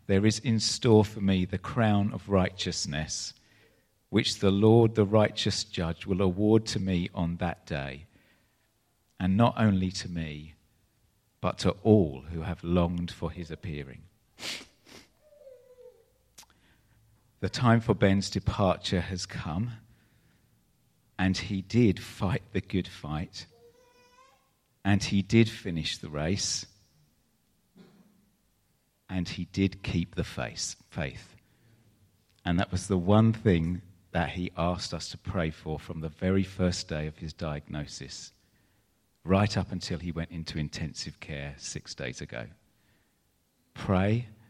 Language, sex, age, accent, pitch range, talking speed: English, male, 50-69, British, 85-110 Hz, 130 wpm